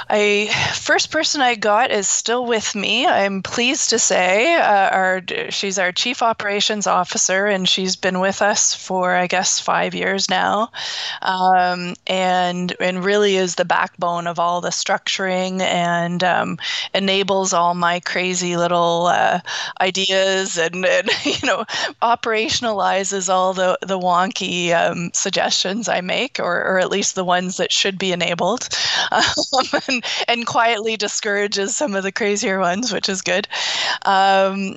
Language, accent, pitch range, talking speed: English, American, 180-205 Hz, 150 wpm